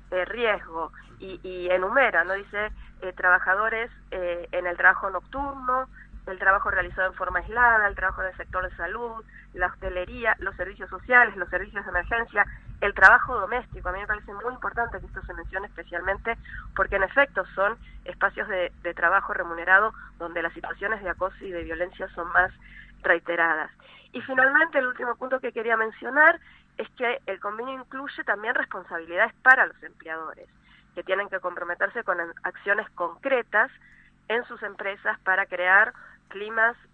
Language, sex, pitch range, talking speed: Spanish, female, 180-235 Hz, 160 wpm